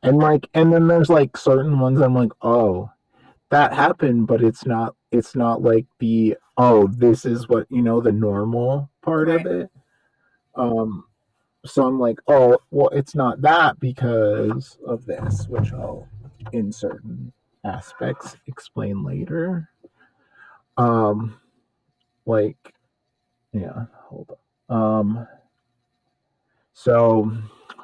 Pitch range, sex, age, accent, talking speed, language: 110-130 Hz, male, 30-49, American, 125 wpm, English